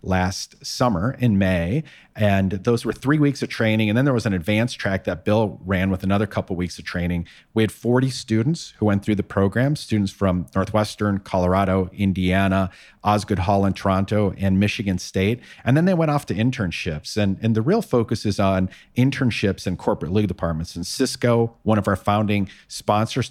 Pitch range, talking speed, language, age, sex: 95-115 Hz, 195 wpm, English, 40-59, male